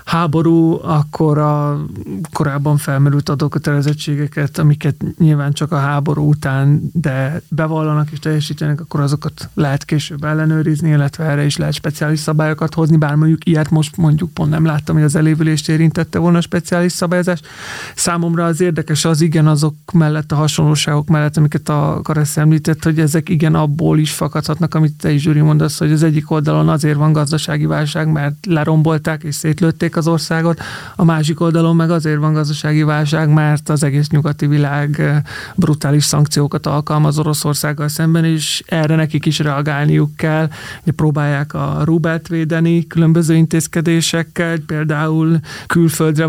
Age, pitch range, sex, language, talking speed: 30-49, 150-165 Hz, male, Hungarian, 150 wpm